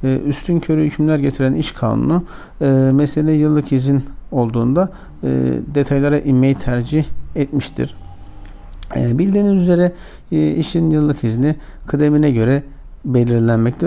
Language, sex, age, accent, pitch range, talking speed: Turkish, male, 60-79, native, 125-155 Hz, 95 wpm